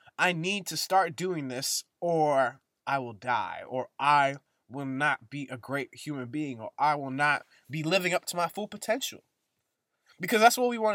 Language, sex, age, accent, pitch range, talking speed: English, male, 20-39, American, 155-210 Hz, 190 wpm